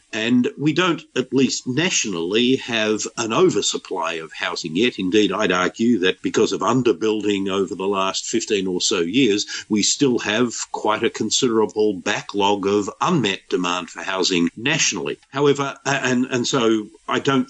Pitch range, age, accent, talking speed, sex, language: 95-130 Hz, 50-69, Australian, 155 wpm, male, English